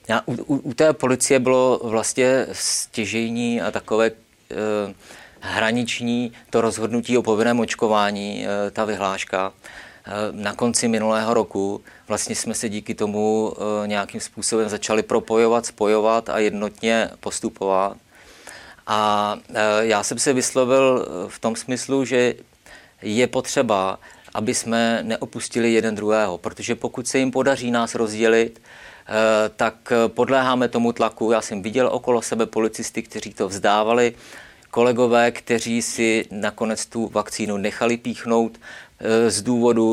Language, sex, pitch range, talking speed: Czech, male, 110-120 Hz, 120 wpm